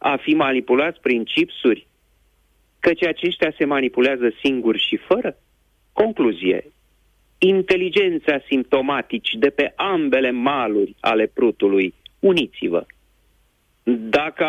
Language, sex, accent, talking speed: Romanian, male, native, 95 wpm